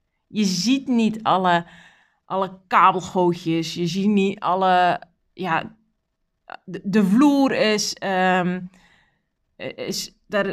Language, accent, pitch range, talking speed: Dutch, Dutch, 175-215 Hz, 105 wpm